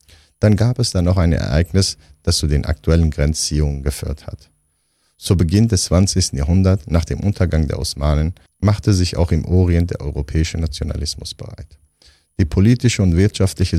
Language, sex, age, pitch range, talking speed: German, male, 50-69, 75-95 Hz, 160 wpm